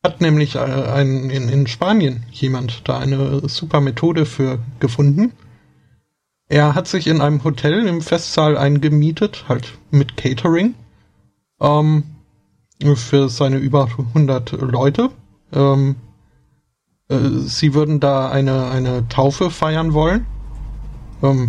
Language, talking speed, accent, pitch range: German, 115 wpm, German, 125-150 Hz